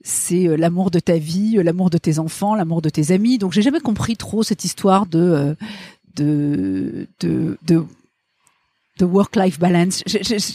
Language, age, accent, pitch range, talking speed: French, 50-69, French, 165-220 Hz, 170 wpm